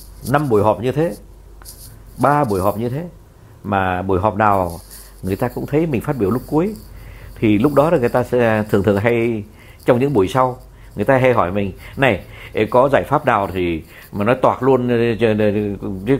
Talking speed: 195 wpm